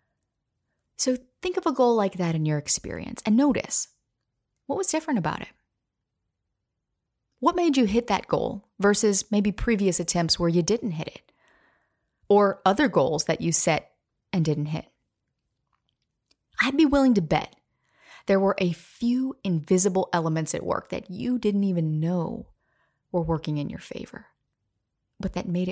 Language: English